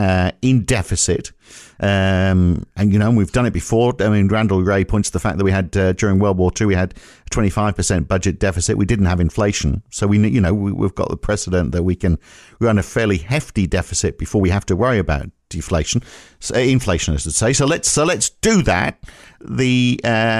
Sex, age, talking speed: male, 50-69, 220 wpm